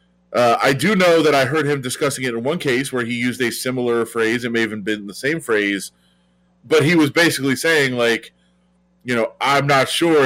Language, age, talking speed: English, 30-49, 215 wpm